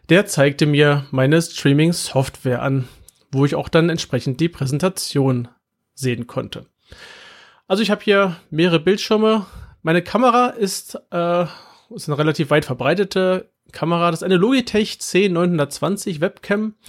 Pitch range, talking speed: 140-190 Hz, 130 wpm